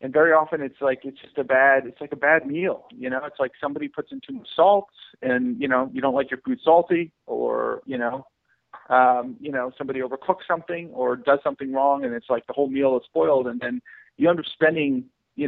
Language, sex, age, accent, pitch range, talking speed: English, male, 40-59, American, 125-150 Hz, 235 wpm